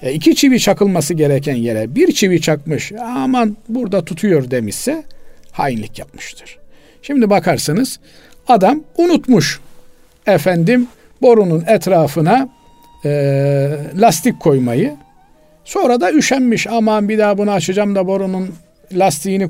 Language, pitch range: Turkish, 145-210 Hz